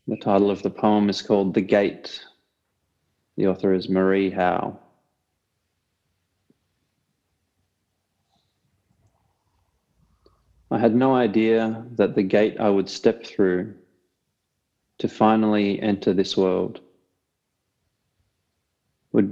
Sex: male